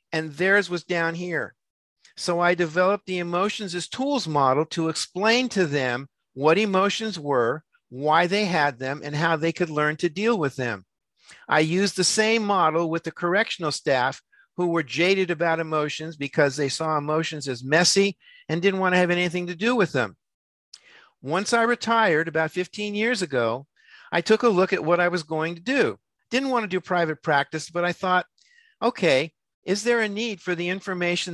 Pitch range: 155-200 Hz